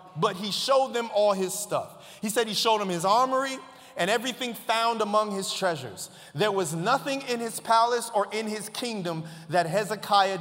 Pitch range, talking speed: 145-210 Hz, 185 wpm